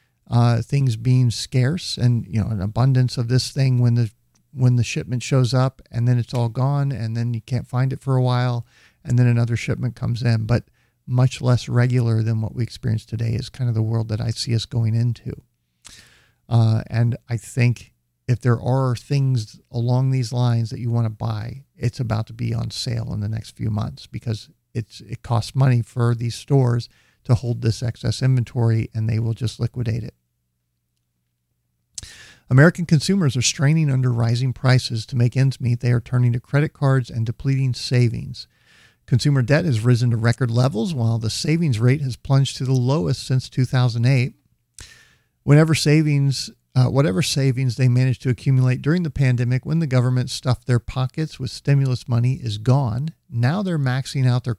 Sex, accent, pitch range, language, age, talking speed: male, American, 115-130 Hz, English, 50-69, 185 wpm